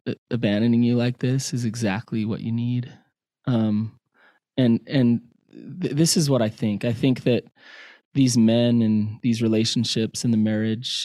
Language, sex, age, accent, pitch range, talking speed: English, male, 20-39, American, 110-130 Hz, 155 wpm